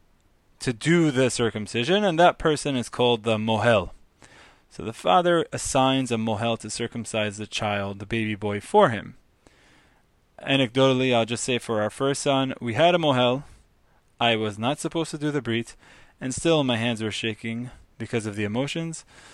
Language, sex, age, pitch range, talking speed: English, male, 20-39, 110-135 Hz, 175 wpm